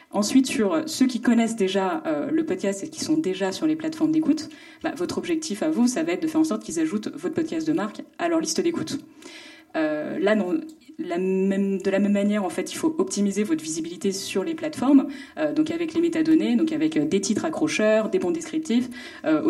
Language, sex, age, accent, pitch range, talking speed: French, female, 30-49, French, 220-320 Hz, 225 wpm